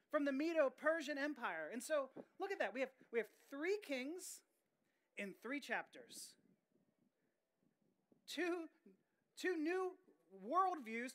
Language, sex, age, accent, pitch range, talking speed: English, male, 30-49, American, 230-305 Hz, 120 wpm